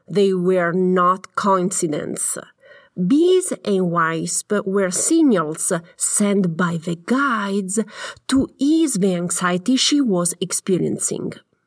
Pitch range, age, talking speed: 185-260 Hz, 40-59, 105 wpm